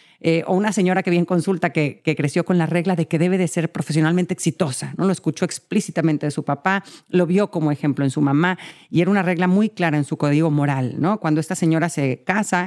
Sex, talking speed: female, 235 wpm